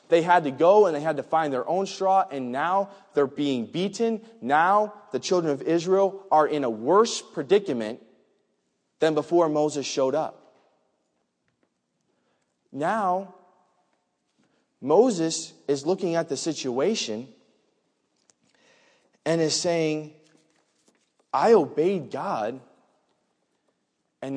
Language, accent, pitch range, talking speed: English, American, 140-190 Hz, 115 wpm